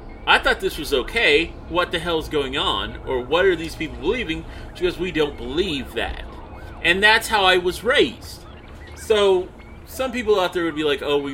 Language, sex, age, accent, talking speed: English, male, 30-49, American, 200 wpm